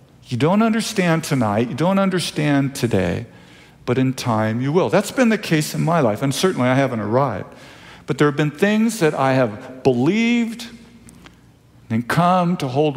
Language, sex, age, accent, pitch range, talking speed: English, male, 50-69, American, 120-155 Hz, 175 wpm